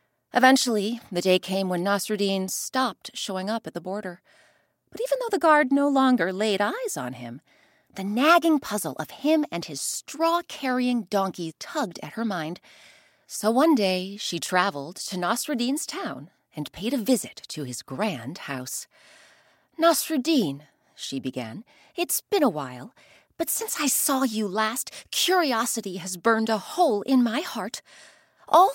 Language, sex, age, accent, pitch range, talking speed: English, female, 30-49, American, 195-300 Hz, 155 wpm